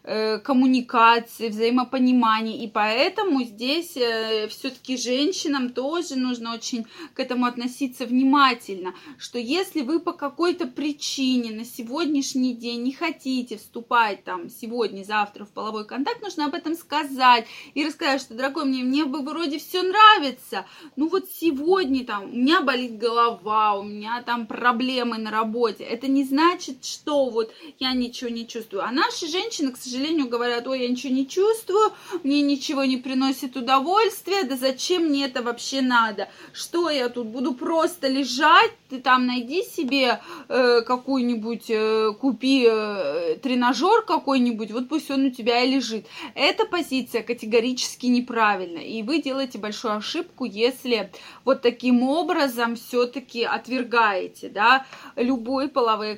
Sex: female